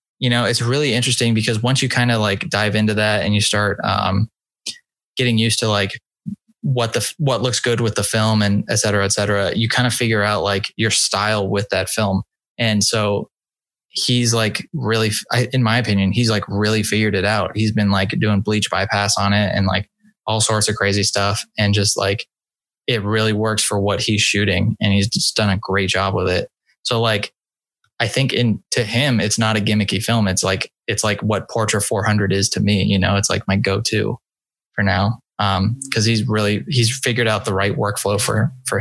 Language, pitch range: English, 100-115 Hz